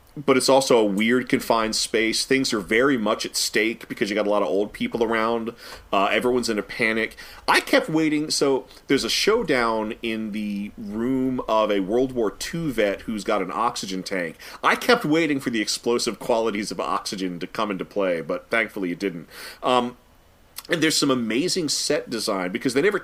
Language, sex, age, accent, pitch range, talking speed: English, male, 30-49, American, 105-130 Hz, 195 wpm